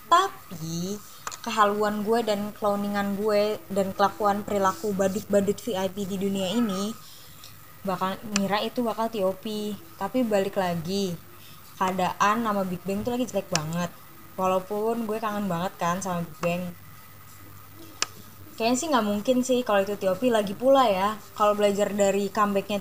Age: 20-39